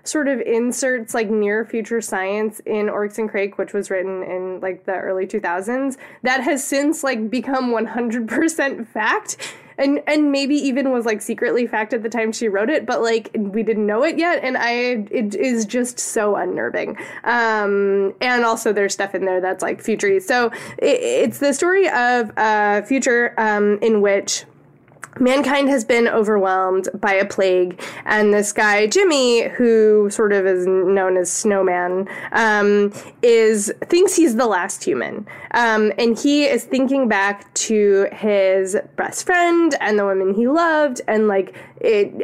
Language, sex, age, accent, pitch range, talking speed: English, female, 20-39, American, 200-255 Hz, 165 wpm